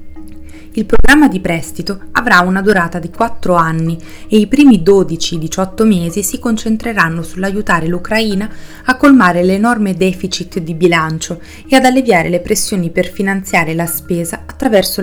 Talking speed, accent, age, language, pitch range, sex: 140 wpm, native, 30-49, Italian, 160-195 Hz, female